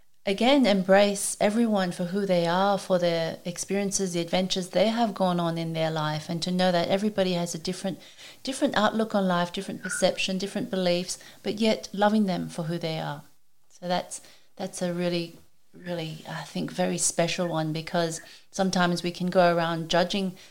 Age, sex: 40-59, female